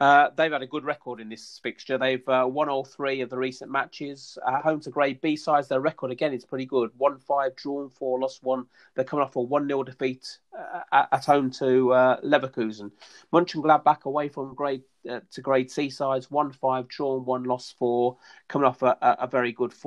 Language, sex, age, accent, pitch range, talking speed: English, male, 30-49, British, 125-145 Hz, 205 wpm